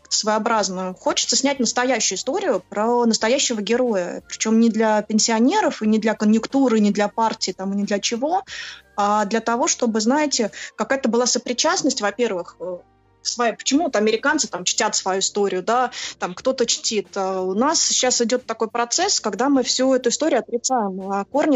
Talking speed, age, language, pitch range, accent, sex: 165 wpm, 20-39, Russian, 200-245 Hz, native, female